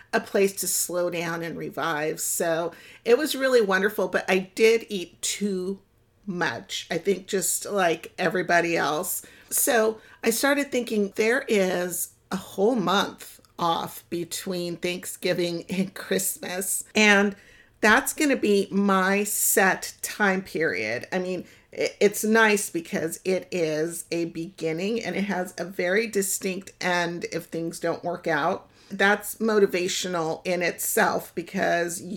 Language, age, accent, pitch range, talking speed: English, 50-69, American, 175-205 Hz, 135 wpm